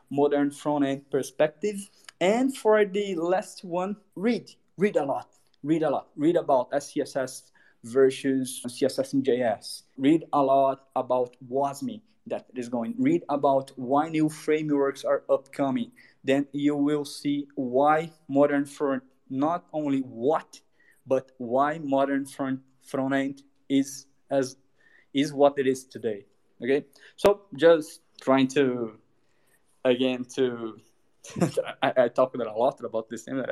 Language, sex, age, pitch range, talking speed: English, male, 20-39, 130-155 Hz, 135 wpm